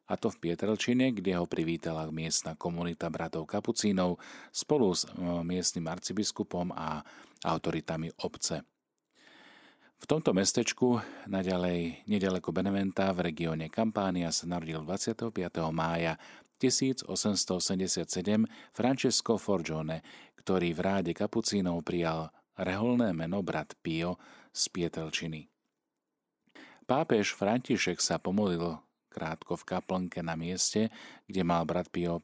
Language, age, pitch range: Slovak, 40-59, 85-100 Hz